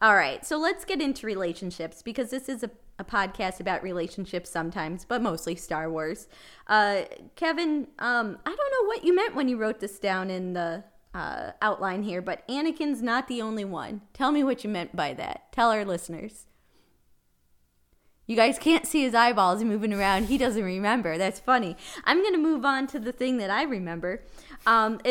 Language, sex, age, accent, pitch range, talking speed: English, female, 20-39, American, 185-245 Hz, 190 wpm